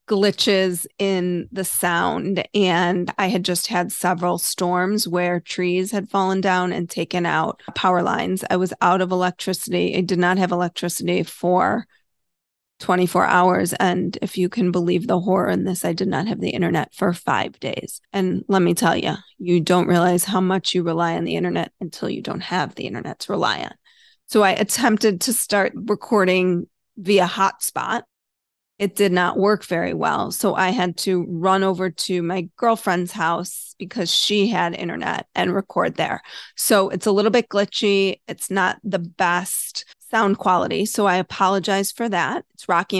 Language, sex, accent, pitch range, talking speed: English, female, American, 180-200 Hz, 175 wpm